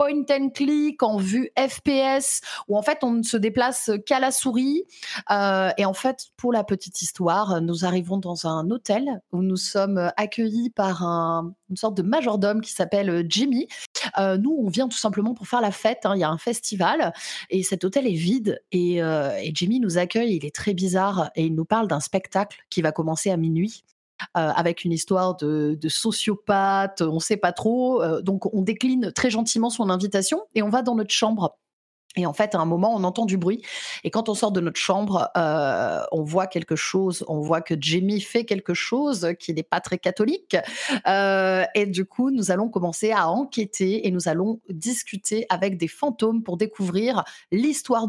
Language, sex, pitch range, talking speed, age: French, female, 180-230 Hz, 205 wpm, 30-49